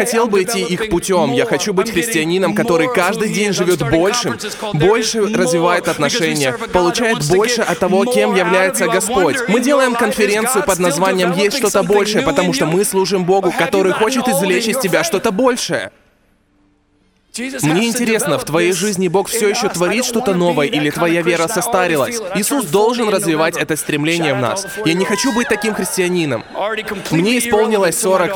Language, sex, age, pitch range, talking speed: Russian, male, 20-39, 165-210 Hz, 160 wpm